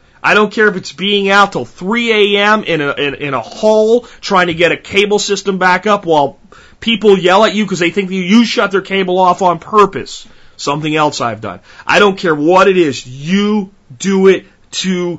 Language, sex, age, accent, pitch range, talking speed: English, male, 30-49, American, 145-195 Hz, 215 wpm